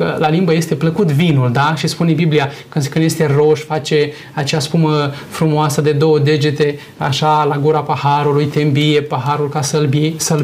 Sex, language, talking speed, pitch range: male, Romanian, 170 wpm, 150-180 Hz